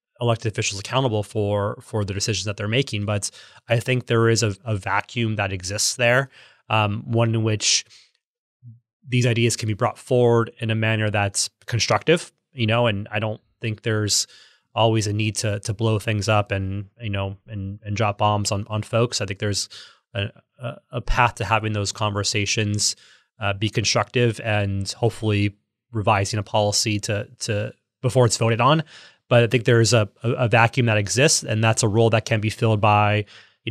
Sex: male